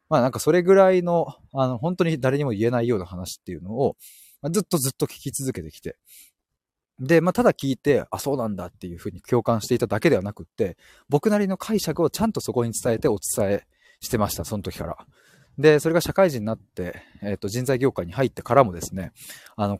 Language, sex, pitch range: Japanese, male, 95-150 Hz